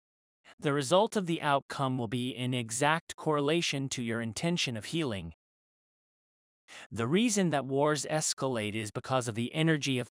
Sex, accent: male, American